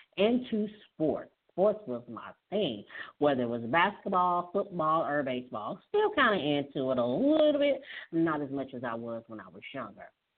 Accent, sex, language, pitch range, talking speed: American, female, English, 130-190 Hz, 180 wpm